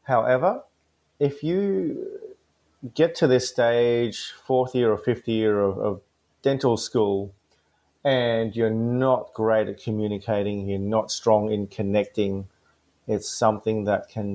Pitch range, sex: 105-140 Hz, male